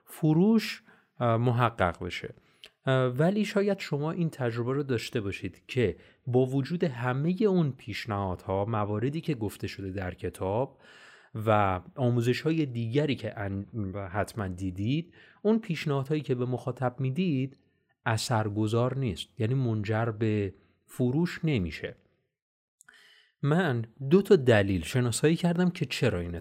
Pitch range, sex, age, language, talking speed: 100-140 Hz, male, 30-49, Persian, 125 wpm